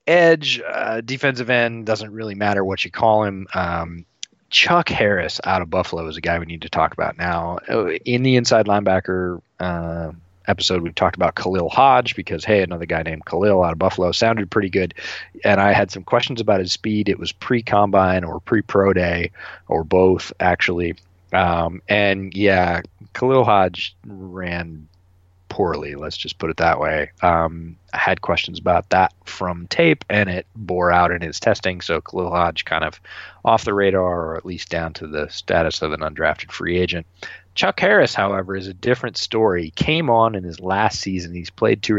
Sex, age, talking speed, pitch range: male, 30-49, 185 wpm, 85-105 Hz